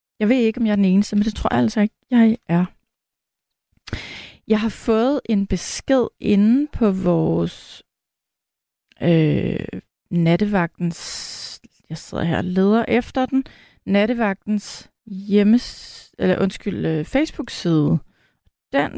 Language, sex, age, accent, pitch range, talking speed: Danish, female, 30-49, native, 185-230 Hz, 120 wpm